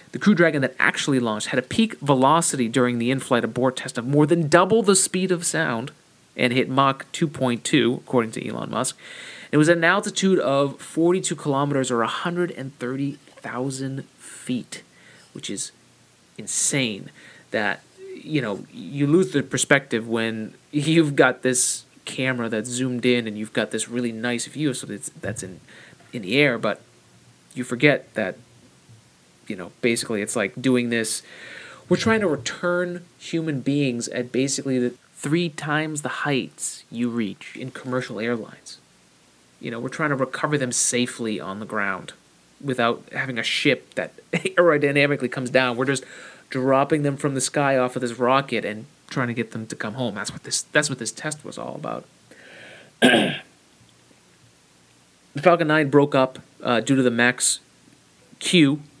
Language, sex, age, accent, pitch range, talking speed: English, male, 30-49, American, 120-155 Hz, 165 wpm